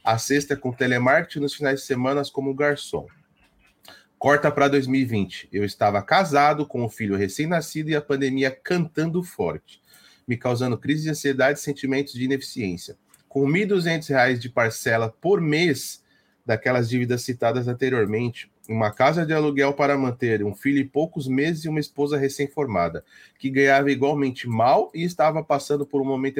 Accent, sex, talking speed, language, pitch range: Brazilian, male, 160 wpm, Portuguese, 130-155 Hz